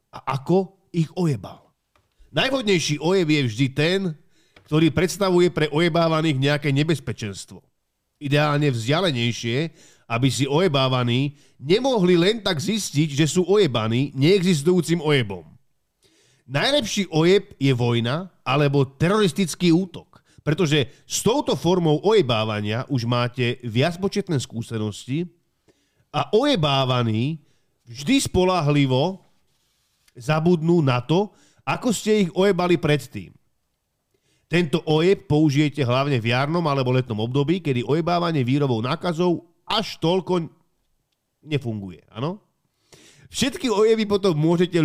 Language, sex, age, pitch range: Slovak, male, 40-59, 130-175 Hz